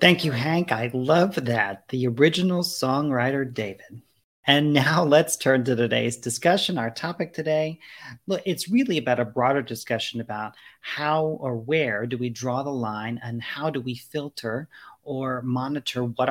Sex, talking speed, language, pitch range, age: male, 160 wpm, English, 120-150 Hz, 40-59